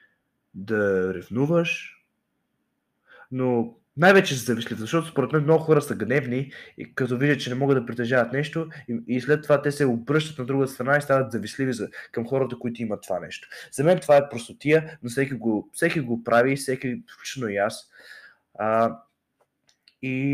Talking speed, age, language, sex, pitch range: 170 wpm, 20-39, Bulgarian, male, 115-150 Hz